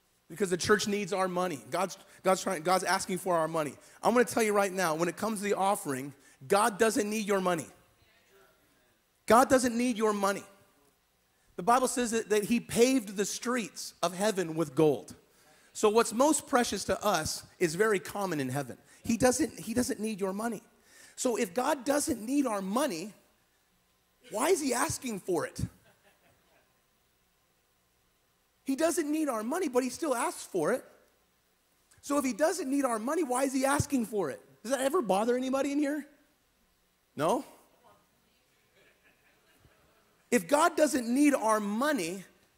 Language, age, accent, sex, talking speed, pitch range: English, 40-59, American, male, 170 wpm, 190-270 Hz